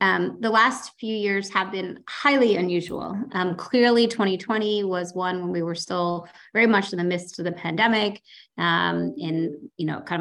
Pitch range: 175-230 Hz